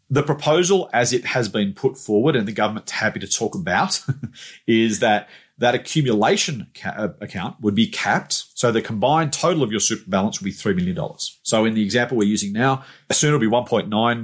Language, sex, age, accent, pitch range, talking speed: English, male, 40-59, Australian, 105-140 Hz, 195 wpm